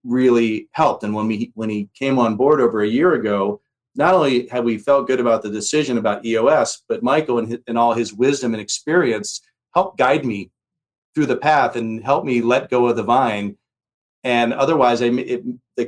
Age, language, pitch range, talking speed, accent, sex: 40-59, English, 105-125 Hz, 205 wpm, American, male